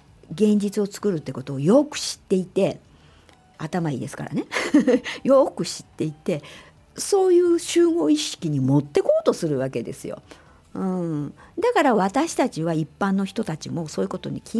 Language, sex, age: Japanese, female, 50-69